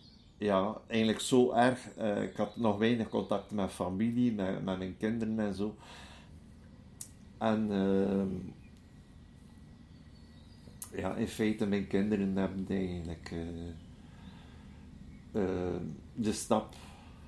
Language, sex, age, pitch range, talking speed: Dutch, male, 50-69, 90-105 Hz, 110 wpm